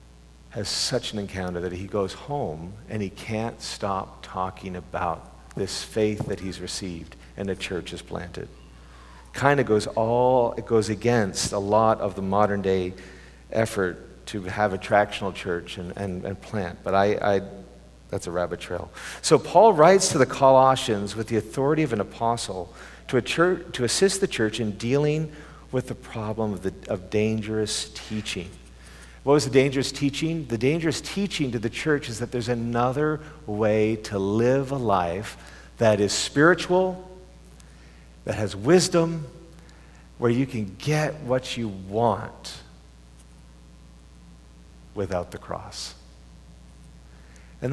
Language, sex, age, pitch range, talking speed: English, male, 50-69, 85-120 Hz, 150 wpm